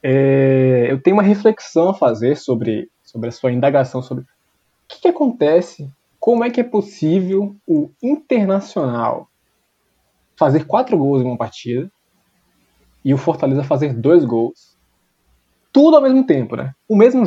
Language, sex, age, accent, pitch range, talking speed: Portuguese, male, 20-39, Brazilian, 130-190 Hz, 145 wpm